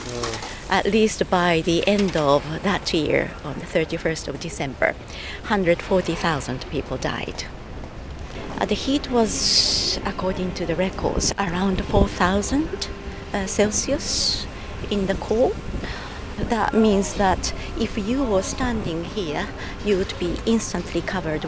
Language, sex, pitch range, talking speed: English, female, 175-215 Hz, 120 wpm